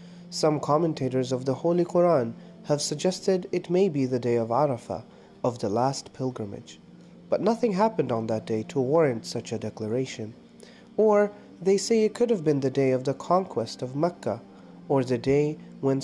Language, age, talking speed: English, 30-49, 180 wpm